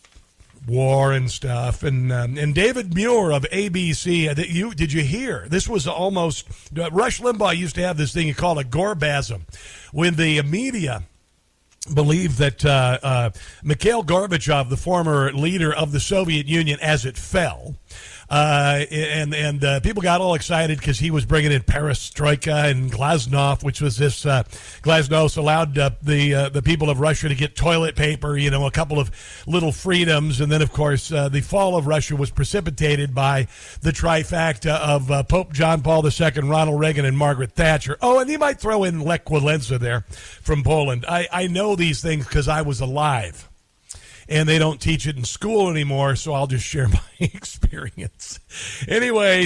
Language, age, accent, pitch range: English, 50-69, American, 135-165 Hz